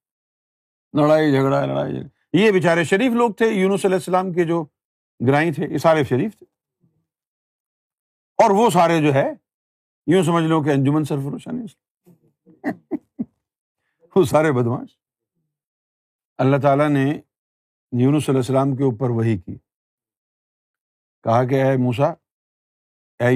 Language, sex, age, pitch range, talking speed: Urdu, male, 50-69, 120-155 Hz, 120 wpm